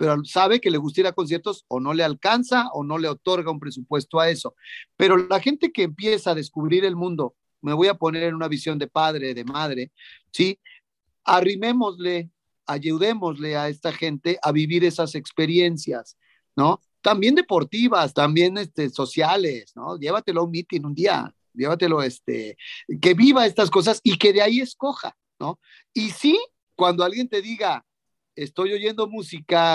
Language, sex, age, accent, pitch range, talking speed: Spanish, male, 40-59, Mexican, 150-200 Hz, 170 wpm